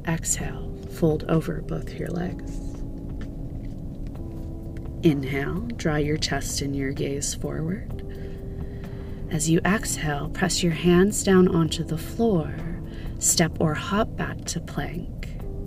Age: 30-49